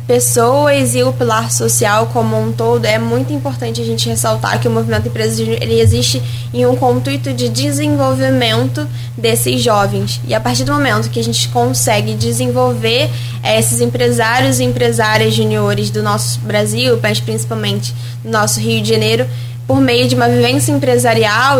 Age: 10-29